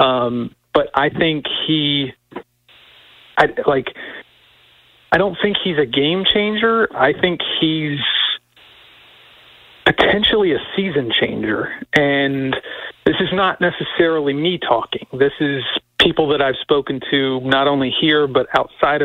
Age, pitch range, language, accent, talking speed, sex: 40-59, 130-160 Hz, English, American, 125 wpm, male